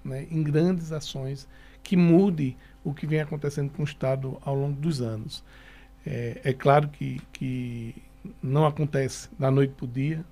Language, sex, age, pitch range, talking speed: Portuguese, male, 60-79, 135-155 Hz, 170 wpm